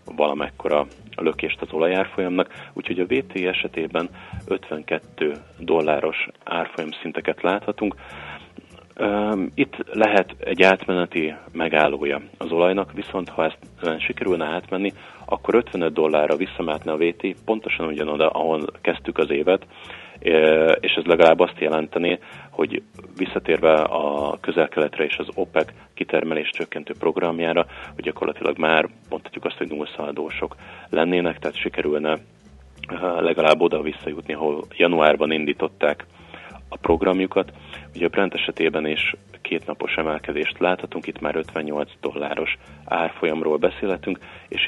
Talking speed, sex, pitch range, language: 110 wpm, male, 75-90 Hz, Hungarian